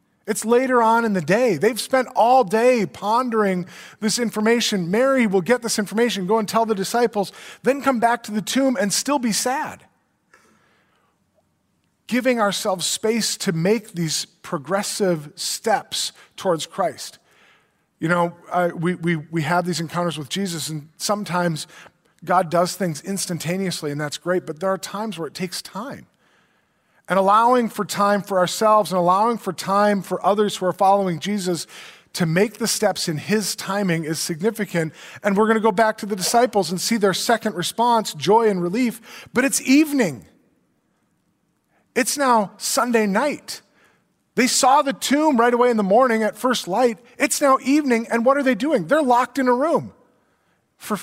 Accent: American